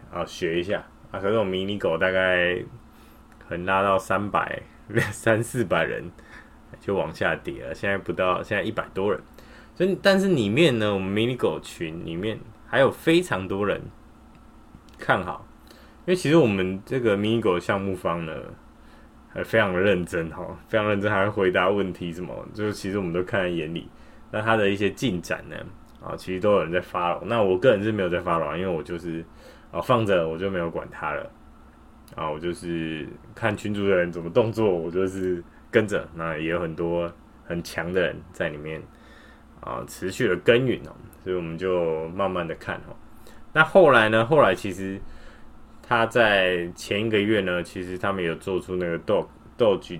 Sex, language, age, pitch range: male, Chinese, 20-39, 85-110 Hz